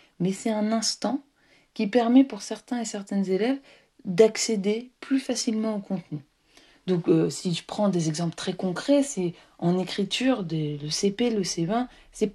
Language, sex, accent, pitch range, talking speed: French, female, French, 165-220 Hz, 165 wpm